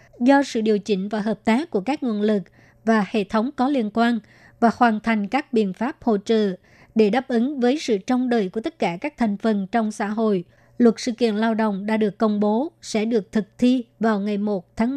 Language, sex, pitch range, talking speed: Vietnamese, male, 210-240 Hz, 235 wpm